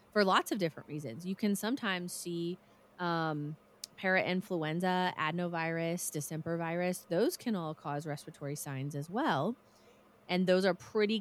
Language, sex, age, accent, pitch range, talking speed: English, female, 20-39, American, 150-185 Hz, 140 wpm